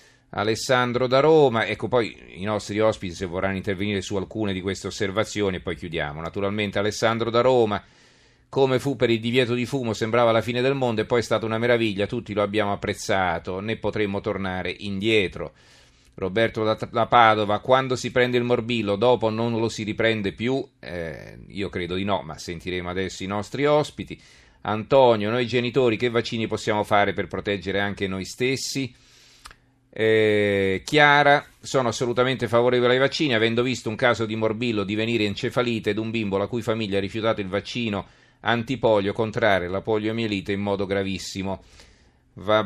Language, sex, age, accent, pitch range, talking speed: Italian, male, 40-59, native, 100-120 Hz, 165 wpm